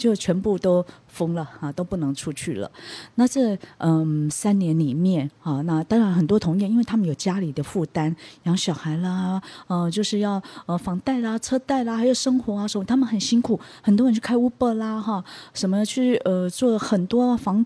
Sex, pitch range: female, 160-225 Hz